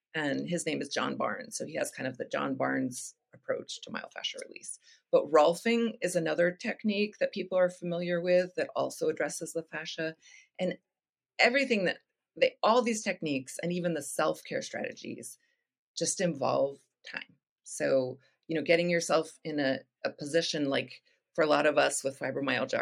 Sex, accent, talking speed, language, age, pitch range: female, American, 170 wpm, English, 30-49, 155-245 Hz